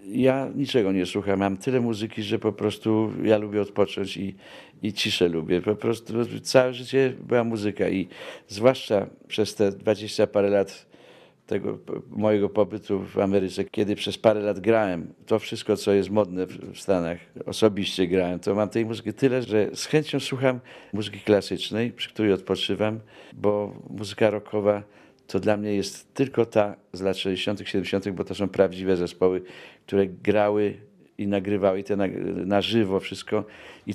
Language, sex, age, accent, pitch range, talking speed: Polish, male, 50-69, native, 95-115 Hz, 165 wpm